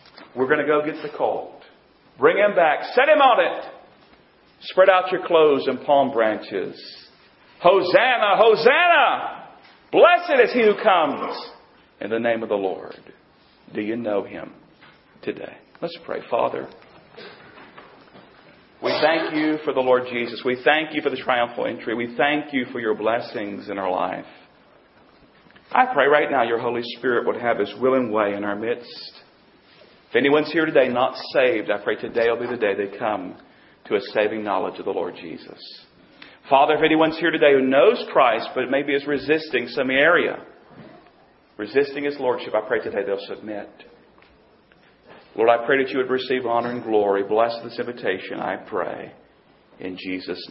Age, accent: 40-59, American